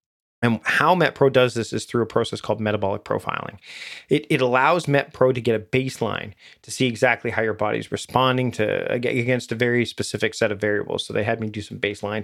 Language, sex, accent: English, male, American